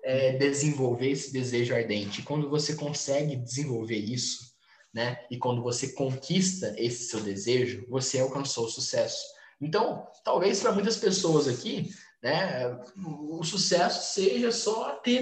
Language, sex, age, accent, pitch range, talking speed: Portuguese, male, 20-39, Brazilian, 125-180 Hz, 135 wpm